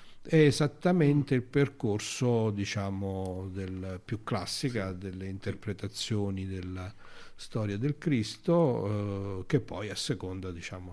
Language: Italian